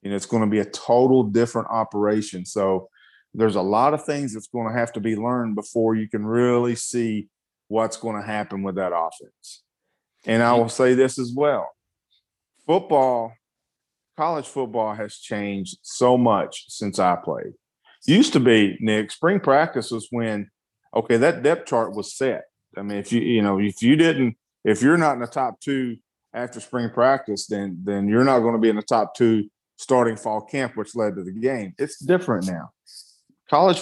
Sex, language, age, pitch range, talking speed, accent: male, English, 40-59, 105-125 Hz, 190 wpm, American